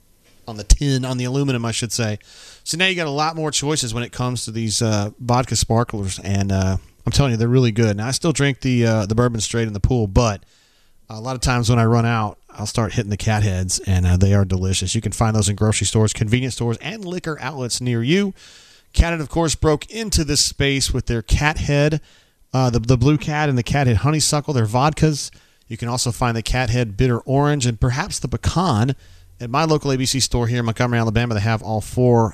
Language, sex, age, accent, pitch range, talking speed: English, male, 30-49, American, 110-130 Hz, 240 wpm